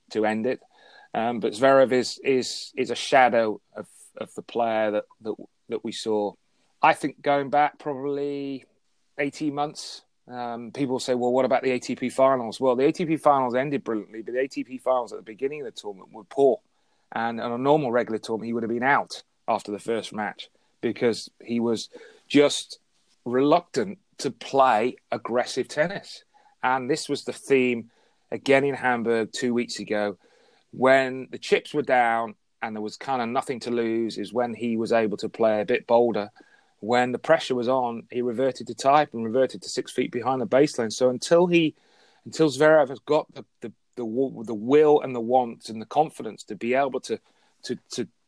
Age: 30-49